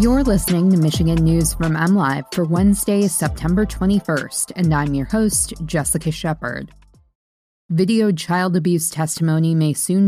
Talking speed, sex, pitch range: 135 wpm, female, 160-190 Hz